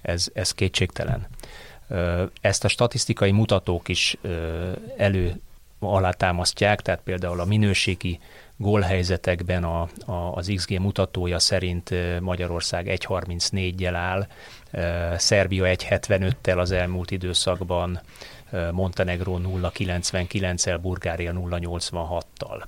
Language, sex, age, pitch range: Hungarian, male, 30-49, 90-100 Hz